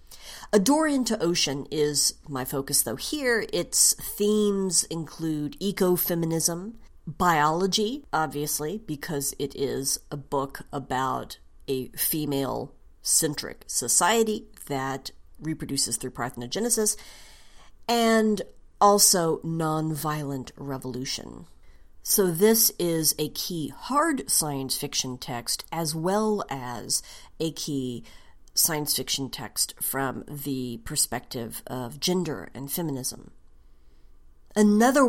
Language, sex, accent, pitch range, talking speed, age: English, female, American, 140-185 Hz, 95 wpm, 40-59